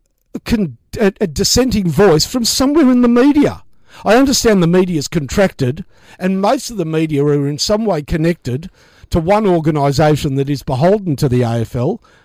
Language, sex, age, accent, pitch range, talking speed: English, male, 50-69, Australian, 150-210 Hz, 160 wpm